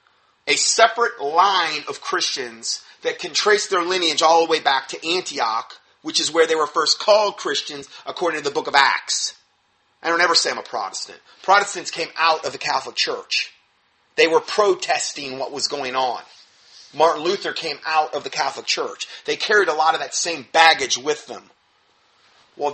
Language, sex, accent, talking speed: English, male, American, 185 wpm